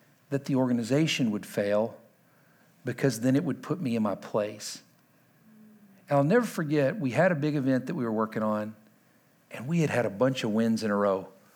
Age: 50-69